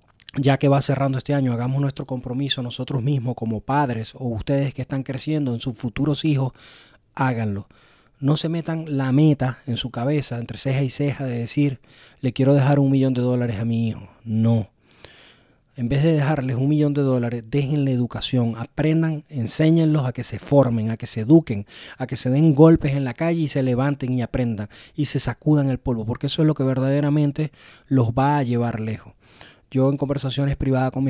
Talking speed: 200 wpm